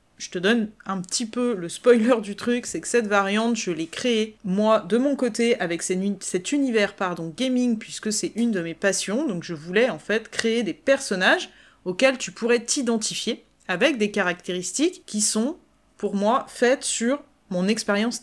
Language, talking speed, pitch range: French, 180 wpm, 190-250 Hz